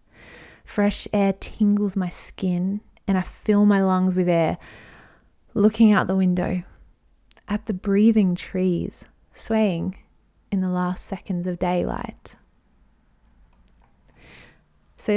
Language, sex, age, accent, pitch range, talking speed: English, female, 20-39, Australian, 185-220 Hz, 110 wpm